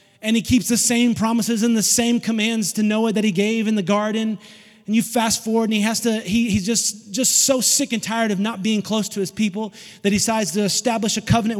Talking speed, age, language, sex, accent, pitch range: 245 wpm, 30-49, English, male, American, 195-220 Hz